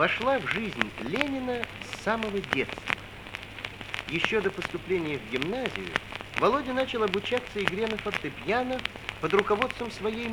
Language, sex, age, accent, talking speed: Russian, male, 50-69, native, 120 wpm